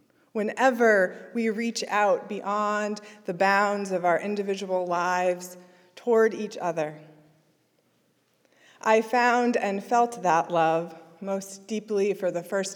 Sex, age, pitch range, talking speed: female, 20-39, 185-225 Hz, 120 wpm